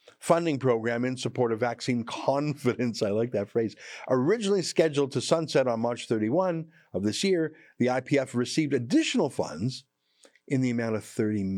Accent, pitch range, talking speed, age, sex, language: American, 110-155 Hz, 160 wpm, 50-69, male, English